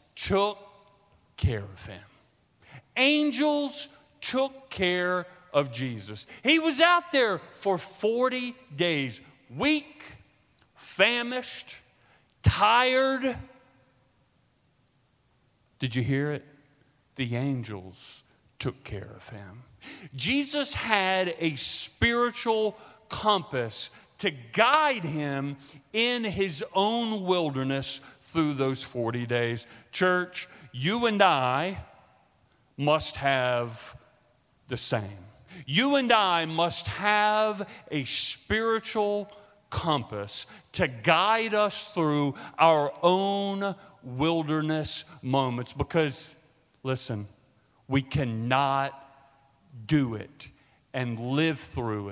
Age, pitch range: 40-59, 125-200 Hz